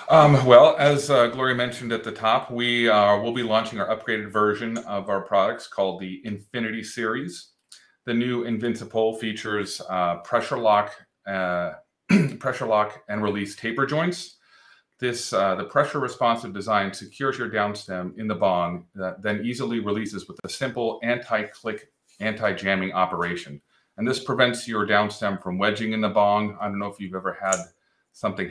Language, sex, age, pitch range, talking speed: English, male, 30-49, 90-115 Hz, 165 wpm